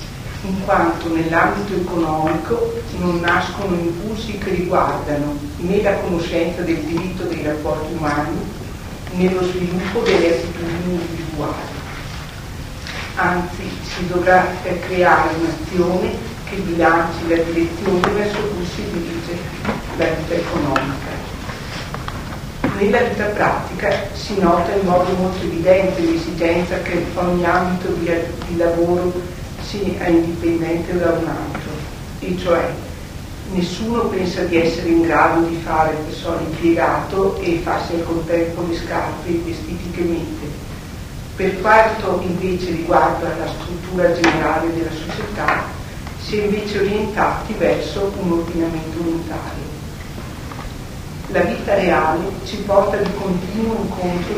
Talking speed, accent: 115 wpm, native